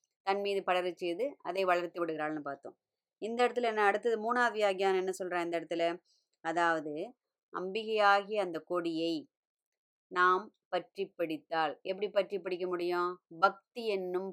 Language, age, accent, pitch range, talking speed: Tamil, 20-39, native, 170-200 Hz, 130 wpm